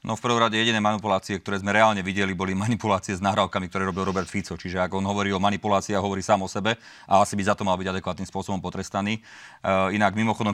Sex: male